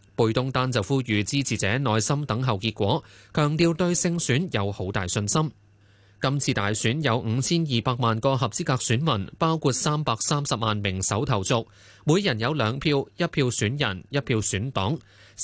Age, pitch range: 20-39, 105-145 Hz